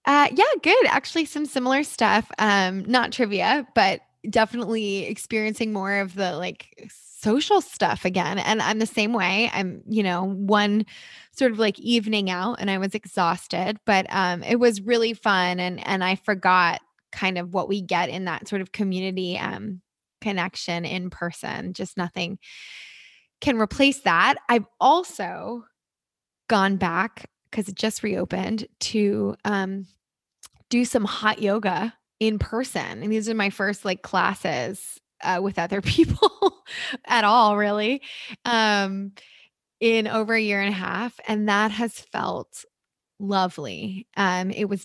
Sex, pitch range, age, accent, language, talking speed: female, 190-225 Hz, 20-39, American, English, 150 wpm